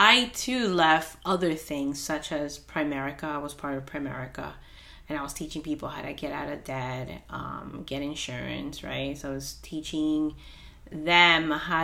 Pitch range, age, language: 145-175 Hz, 30-49, English